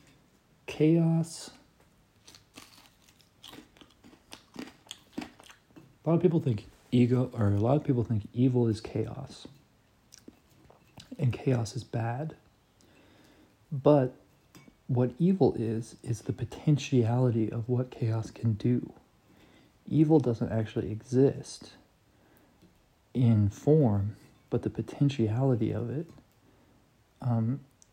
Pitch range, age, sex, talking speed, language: 110-140 Hz, 40-59, male, 95 wpm, English